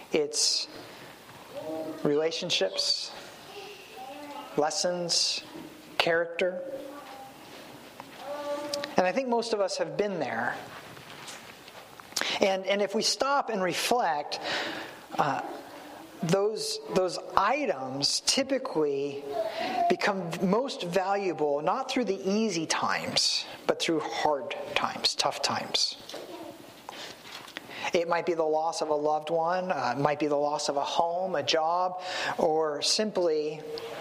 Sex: male